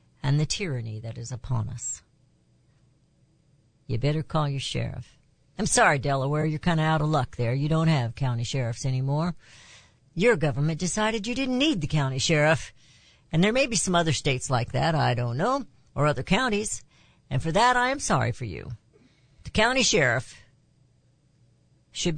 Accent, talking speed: American, 175 wpm